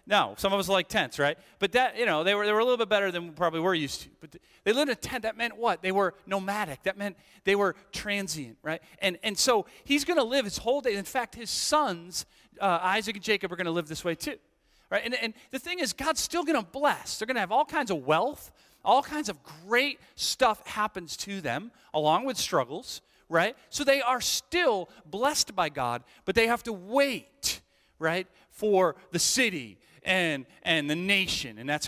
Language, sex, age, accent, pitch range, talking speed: English, male, 40-59, American, 140-215 Hz, 230 wpm